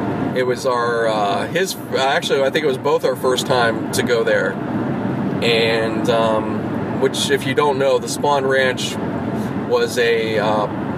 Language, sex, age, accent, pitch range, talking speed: English, male, 30-49, American, 110-140 Hz, 165 wpm